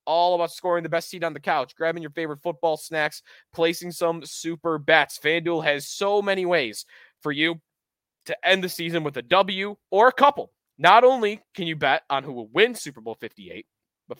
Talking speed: 205 wpm